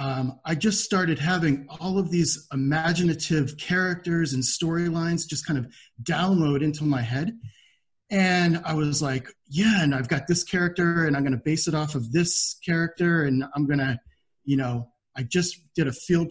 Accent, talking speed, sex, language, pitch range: American, 185 wpm, male, English, 135-170 Hz